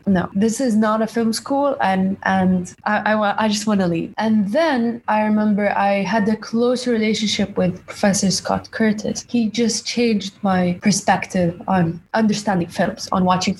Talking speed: 170 wpm